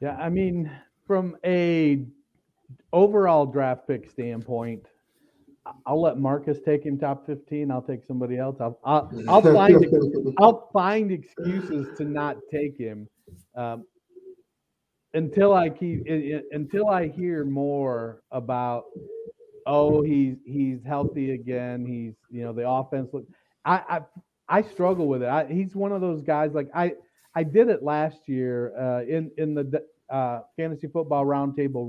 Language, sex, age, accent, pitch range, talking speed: English, male, 40-59, American, 130-170 Hz, 145 wpm